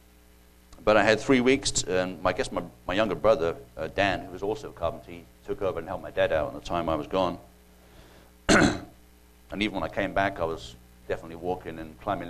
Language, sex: English, male